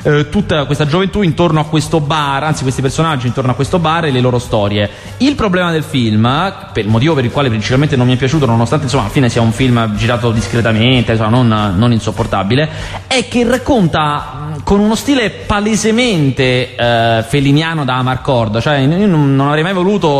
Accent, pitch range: native, 130-165 Hz